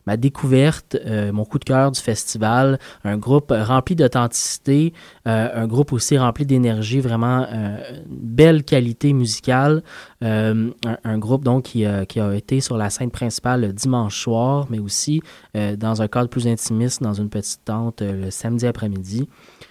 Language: French